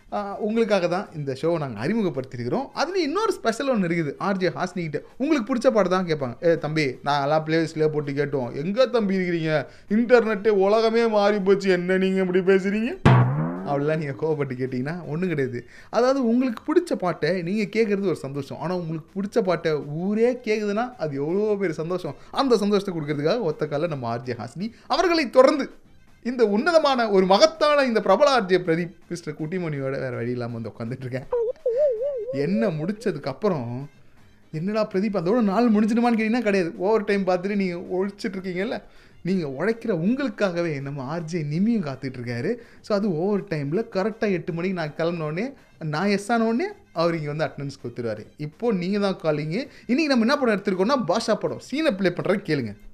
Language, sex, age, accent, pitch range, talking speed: Tamil, male, 30-49, native, 155-225 Hz, 95 wpm